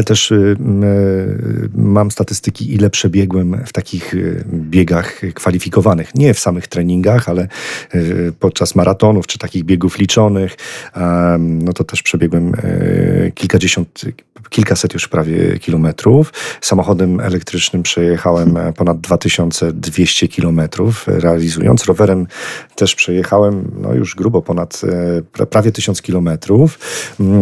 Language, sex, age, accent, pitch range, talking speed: Polish, male, 40-59, native, 85-100 Hz, 100 wpm